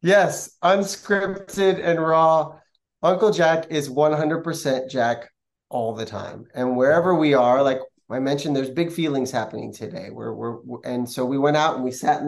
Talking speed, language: 170 wpm, English